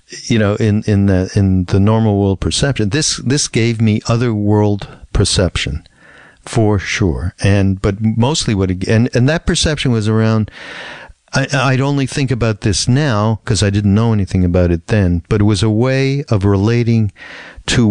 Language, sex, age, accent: English, male, 50-69, American